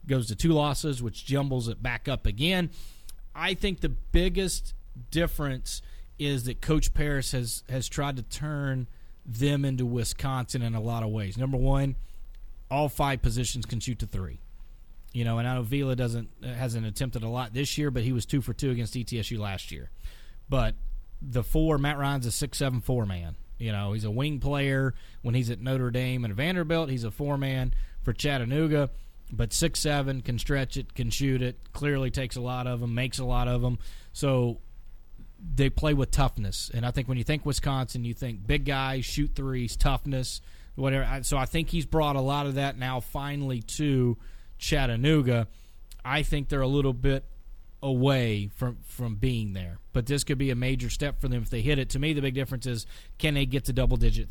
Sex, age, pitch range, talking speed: male, 30-49, 115-140 Hz, 200 wpm